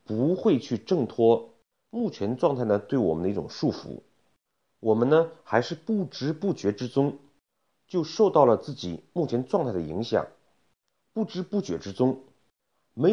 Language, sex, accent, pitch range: Chinese, male, native, 110-170 Hz